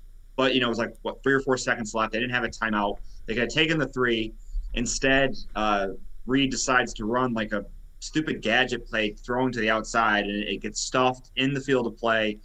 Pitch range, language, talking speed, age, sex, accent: 105-125 Hz, English, 220 wpm, 30-49, male, American